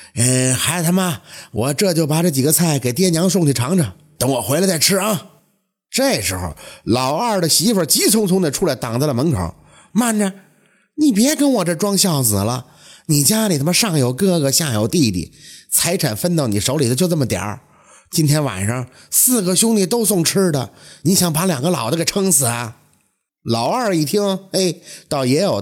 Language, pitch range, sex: Chinese, 125-195 Hz, male